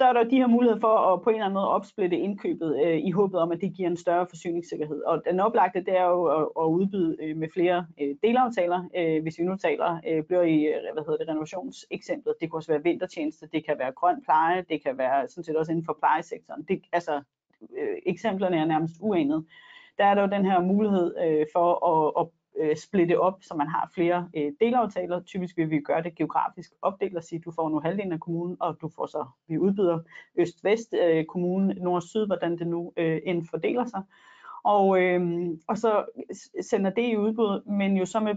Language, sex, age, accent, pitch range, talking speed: Danish, female, 30-49, native, 165-200 Hz, 215 wpm